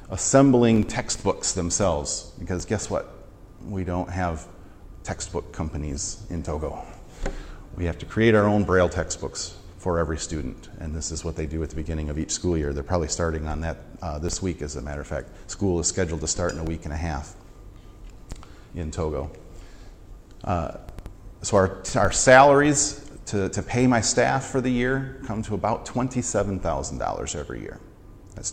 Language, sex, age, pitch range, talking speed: English, male, 40-59, 85-105 Hz, 175 wpm